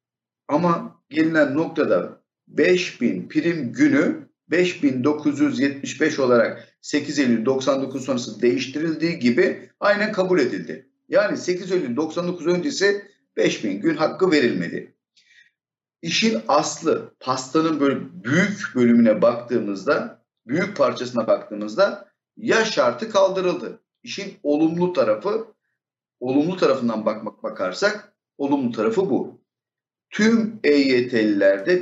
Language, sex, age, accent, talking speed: Turkish, male, 50-69, native, 95 wpm